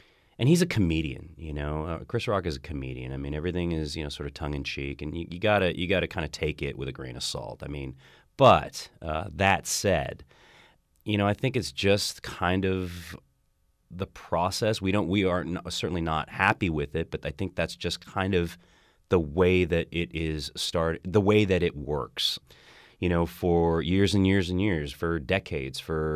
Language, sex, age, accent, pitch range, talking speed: English, male, 30-49, American, 75-90 Hz, 215 wpm